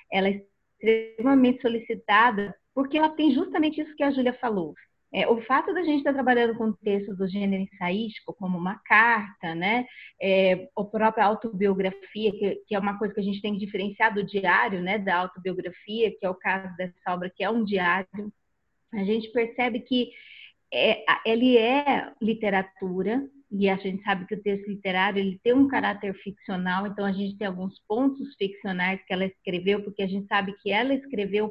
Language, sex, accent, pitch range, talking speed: Portuguese, female, Brazilian, 195-240 Hz, 185 wpm